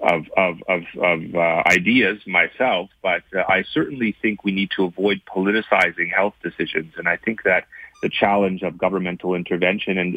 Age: 30-49